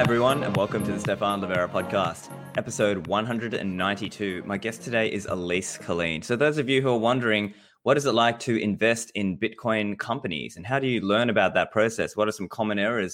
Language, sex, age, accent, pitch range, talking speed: English, male, 20-39, Australian, 90-115 Hz, 205 wpm